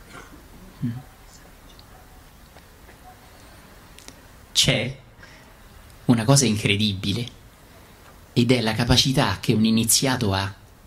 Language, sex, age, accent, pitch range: Italian, male, 30-49, native, 95-115 Hz